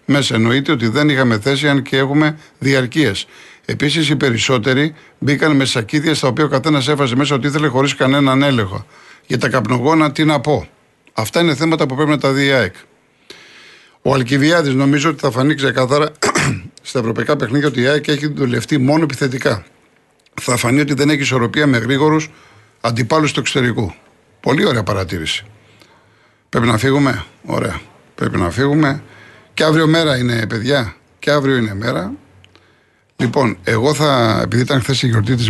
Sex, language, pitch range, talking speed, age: male, Greek, 115-145 Hz, 165 wpm, 50-69